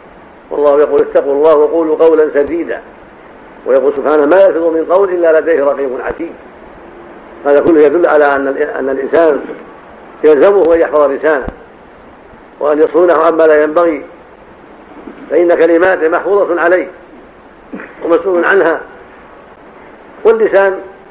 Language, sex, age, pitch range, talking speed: Arabic, male, 70-89, 160-195 Hz, 110 wpm